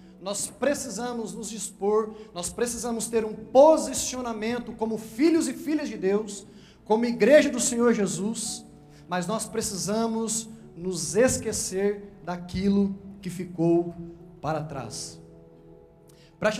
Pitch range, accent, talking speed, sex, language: 195-245 Hz, Brazilian, 110 wpm, male, Portuguese